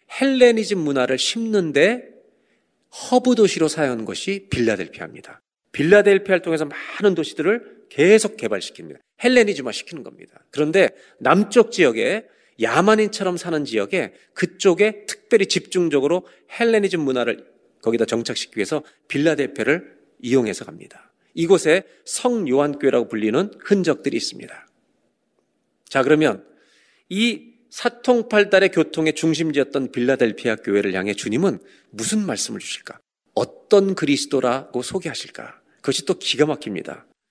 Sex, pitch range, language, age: male, 130-200 Hz, Korean, 40-59